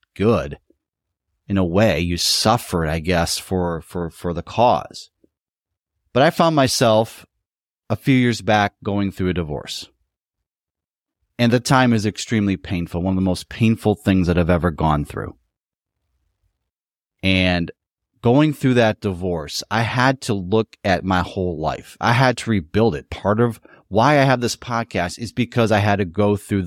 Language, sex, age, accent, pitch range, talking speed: English, male, 30-49, American, 90-120 Hz, 165 wpm